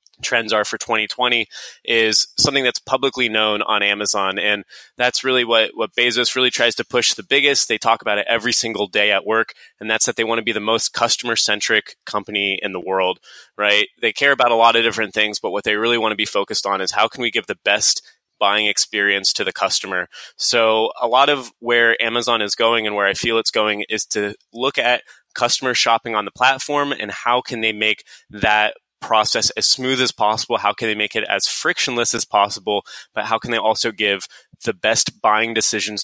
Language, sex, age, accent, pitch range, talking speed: English, male, 20-39, American, 105-120 Hz, 215 wpm